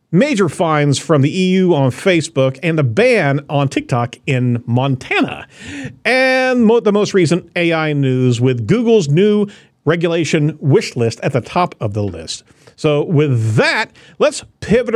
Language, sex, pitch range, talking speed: English, male, 130-180 Hz, 150 wpm